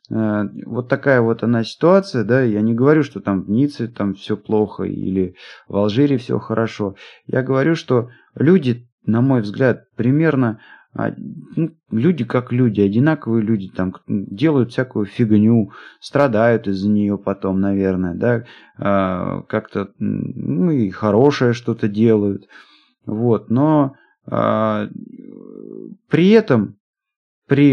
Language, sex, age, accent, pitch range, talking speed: Russian, male, 30-49, native, 105-130 Hz, 125 wpm